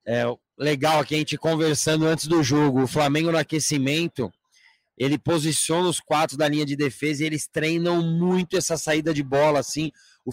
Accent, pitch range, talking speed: Brazilian, 135-160 Hz, 180 wpm